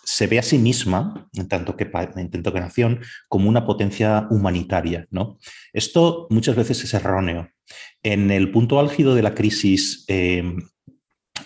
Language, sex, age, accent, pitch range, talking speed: Spanish, male, 30-49, Spanish, 95-115 Hz, 145 wpm